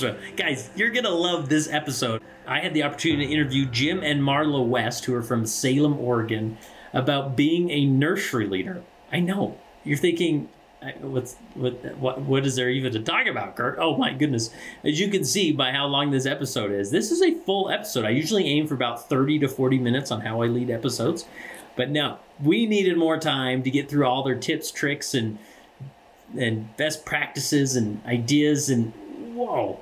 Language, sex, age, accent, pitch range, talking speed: English, male, 30-49, American, 125-155 Hz, 195 wpm